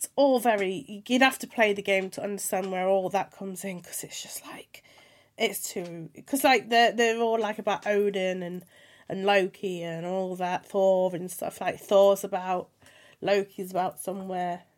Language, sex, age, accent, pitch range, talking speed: English, female, 30-49, British, 190-250 Hz, 185 wpm